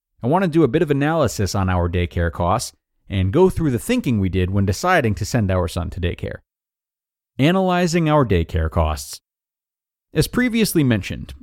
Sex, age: male, 40-59